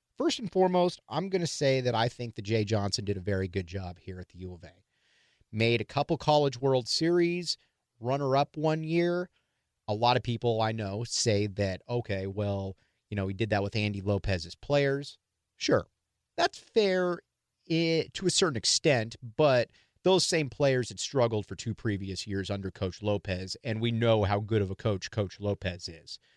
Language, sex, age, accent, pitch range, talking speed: English, male, 40-59, American, 100-140 Hz, 190 wpm